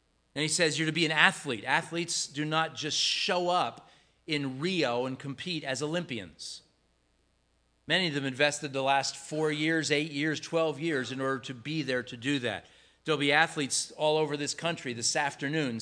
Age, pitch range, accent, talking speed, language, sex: 40-59, 120-160 Hz, American, 185 wpm, English, male